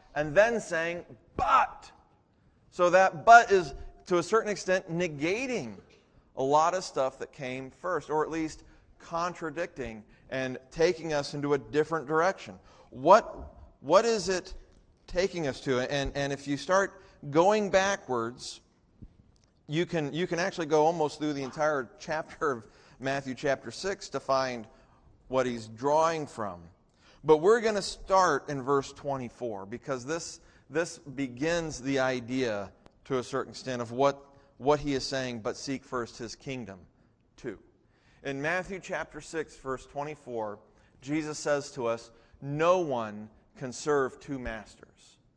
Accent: American